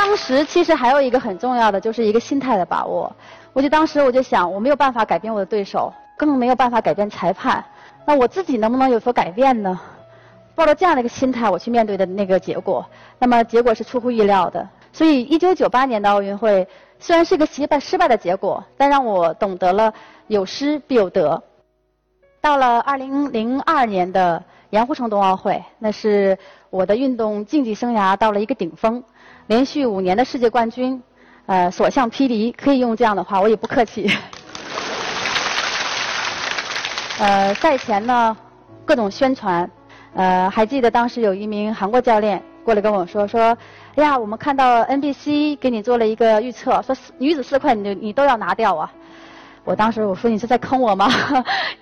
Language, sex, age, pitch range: Chinese, female, 20-39, 205-265 Hz